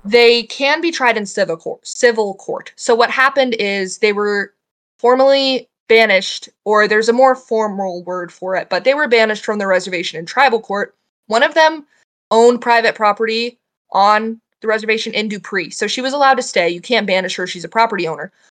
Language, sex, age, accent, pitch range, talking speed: English, female, 20-39, American, 195-240 Hz, 190 wpm